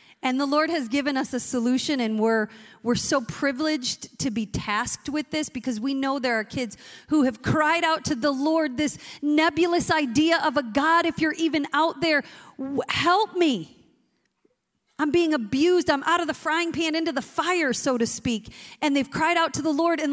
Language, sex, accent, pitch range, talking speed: English, female, American, 235-310 Hz, 200 wpm